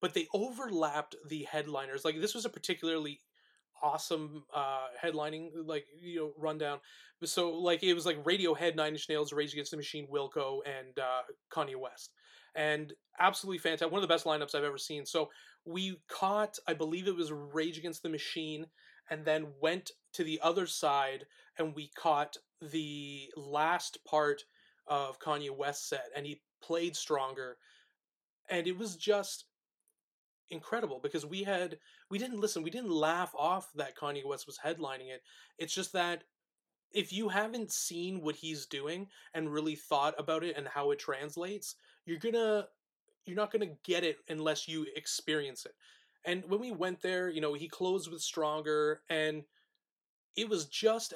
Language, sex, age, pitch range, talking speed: English, male, 30-49, 150-180 Hz, 170 wpm